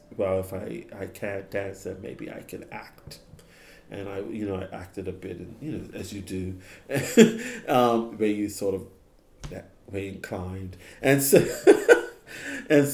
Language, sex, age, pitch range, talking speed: English, male, 40-59, 95-115 Hz, 175 wpm